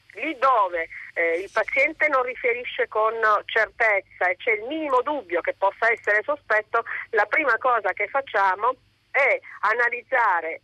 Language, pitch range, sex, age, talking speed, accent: Italian, 195-270 Hz, female, 40-59, 135 wpm, native